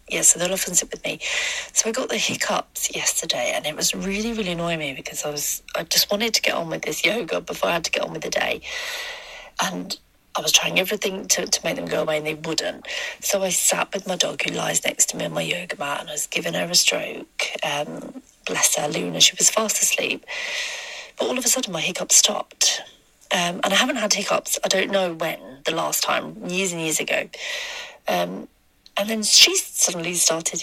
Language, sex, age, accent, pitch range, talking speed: English, female, 40-59, British, 175-260 Hz, 225 wpm